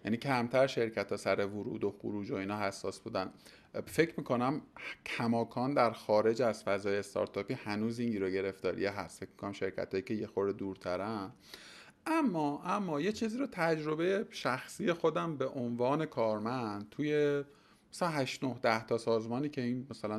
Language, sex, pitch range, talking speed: Persian, male, 105-135 Hz, 160 wpm